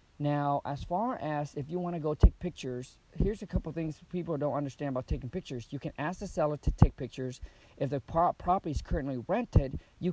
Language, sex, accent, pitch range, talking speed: English, male, American, 130-155 Hz, 220 wpm